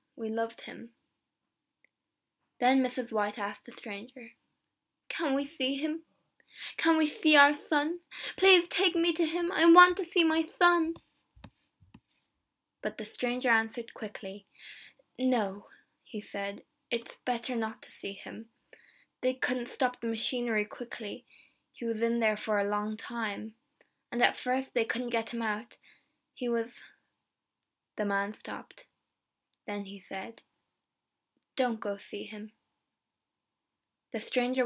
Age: 10-29